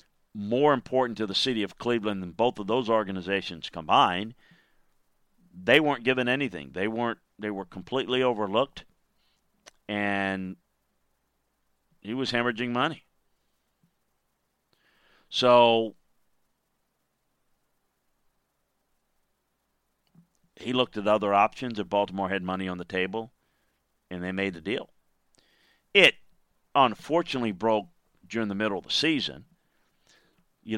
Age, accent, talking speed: 40-59, American, 110 wpm